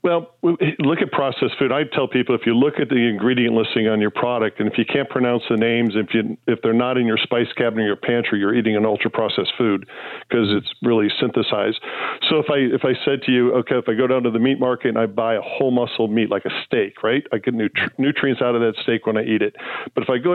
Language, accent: English, American